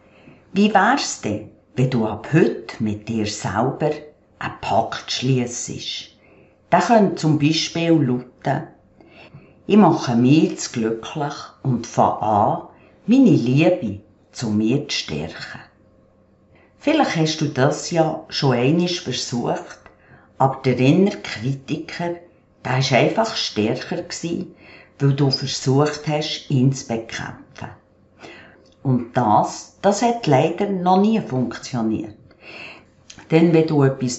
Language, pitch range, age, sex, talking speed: German, 125-170 Hz, 50-69, female, 120 wpm